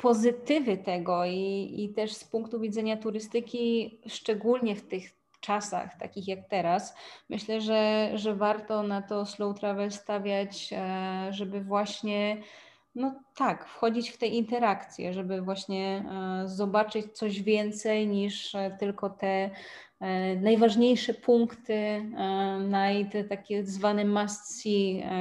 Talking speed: 115 wpm